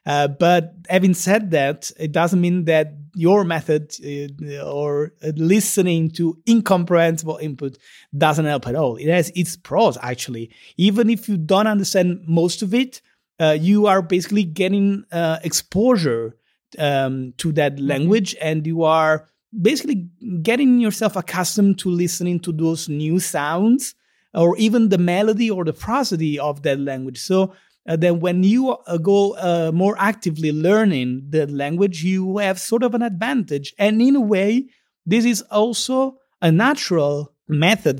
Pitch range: 155-205 Hz